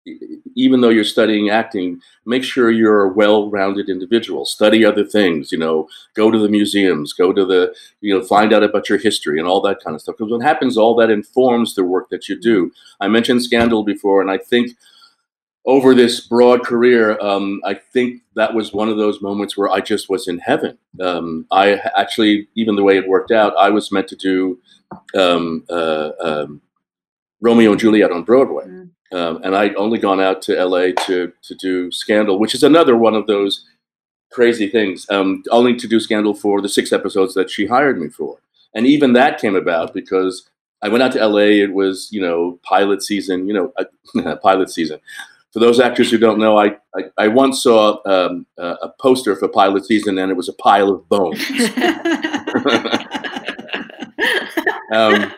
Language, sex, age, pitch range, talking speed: English, male, 50-69, 95-120 Hz, 190 wpm